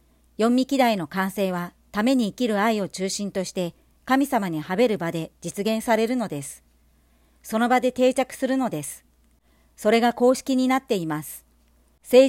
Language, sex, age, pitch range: Japanese, male, 50-69, 165-255 Hz